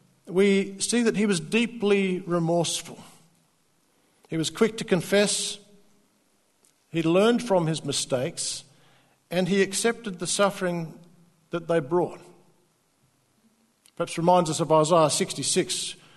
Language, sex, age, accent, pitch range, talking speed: English, male, 60-79, Australian, 175-230 Hz, 115 wpm